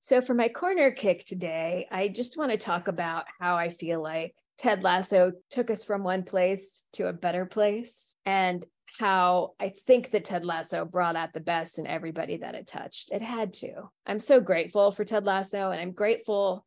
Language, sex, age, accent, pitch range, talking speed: English, female, 20-39, American, 180-220 Hz, 200 wpm